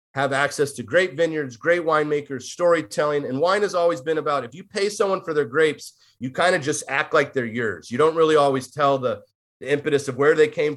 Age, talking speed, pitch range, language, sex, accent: 30-49, 230 wpm, 130-160 Hz, English, male, American